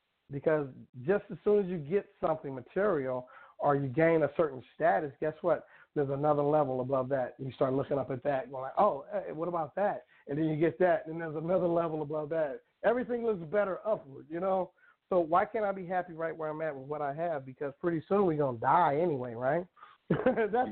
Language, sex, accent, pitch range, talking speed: English, male, American, 155-220 Hz, 215 wpm